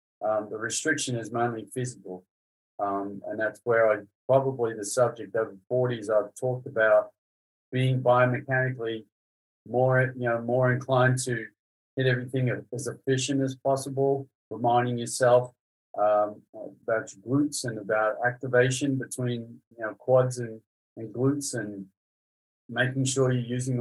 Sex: male